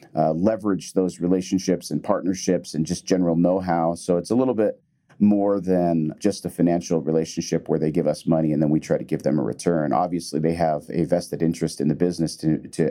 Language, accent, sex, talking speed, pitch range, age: English, American, male, 215 wpm, 80-100 Hz, 40-59